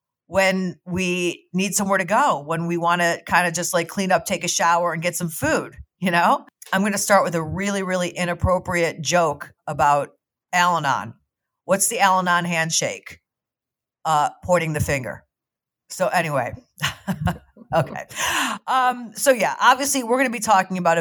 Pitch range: 150-185 Hz